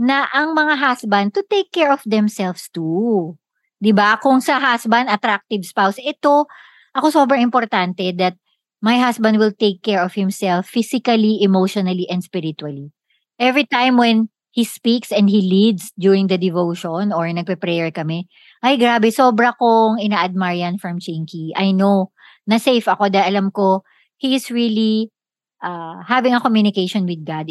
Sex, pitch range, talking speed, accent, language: male, 185-240 Hz, 155 wpm, native, Filipino